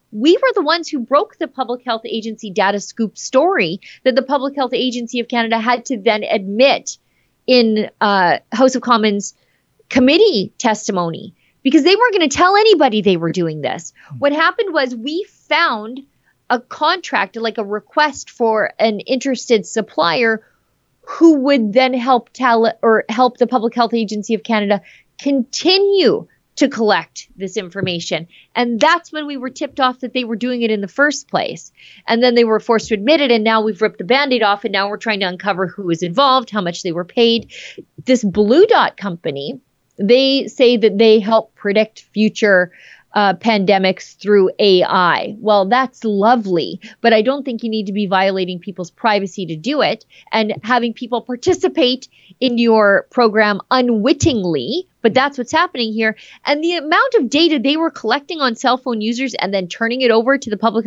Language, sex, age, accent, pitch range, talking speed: English, female, 30-49, American, 210-270 Hz, 180 wpm